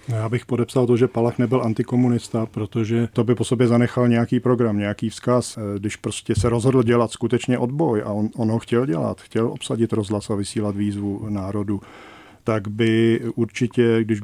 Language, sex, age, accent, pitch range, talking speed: Czech, male, 40-59, native, 105-120 Hz, 175 wpm